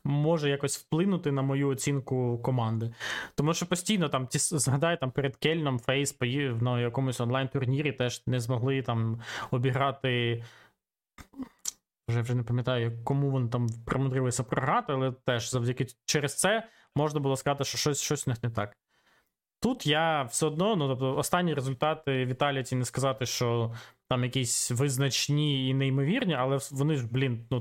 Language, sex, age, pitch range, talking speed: Ukrainian, male, 20-39, 125-145 Hz, 160 wpm